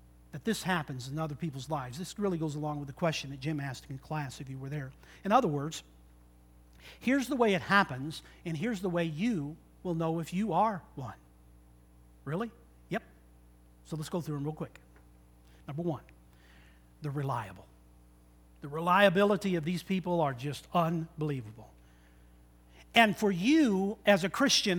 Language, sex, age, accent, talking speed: English, male, 50-69, American, 165 wpm